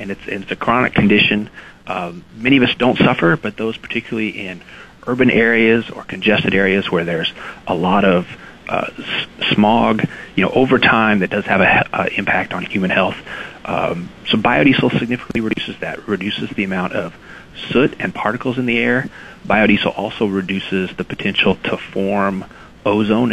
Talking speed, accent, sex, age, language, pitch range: 165 wpm, American, male, 40-59, English, 105-125 Hz